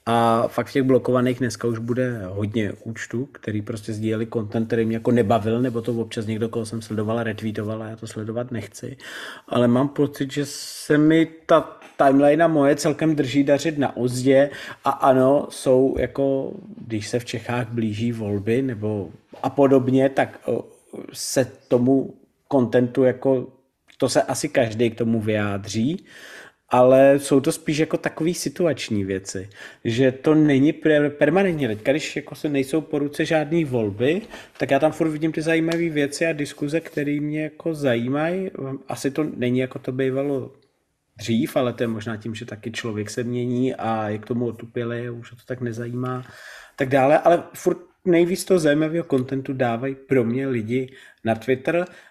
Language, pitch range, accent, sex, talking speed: Czech, 115-145 Hz, native, male, 165 wpm